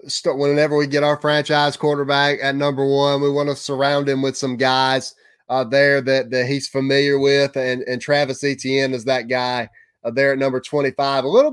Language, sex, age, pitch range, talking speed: English, male, 30-49, 130-145 Hz, 200 wpm